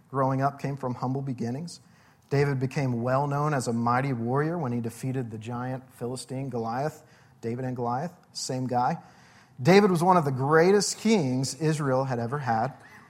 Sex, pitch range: male, 120-155 Hz